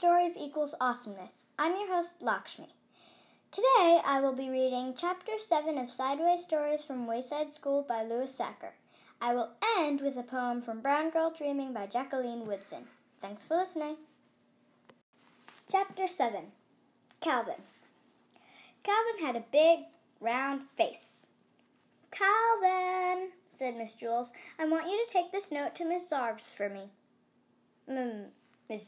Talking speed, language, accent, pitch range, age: 135 wpm, English, American, 240-350 Hz, 10-29